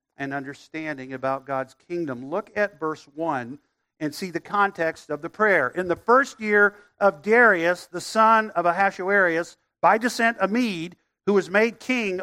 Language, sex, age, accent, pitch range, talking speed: English, male, 50-69, American, 175-240 Hz, 160 wpm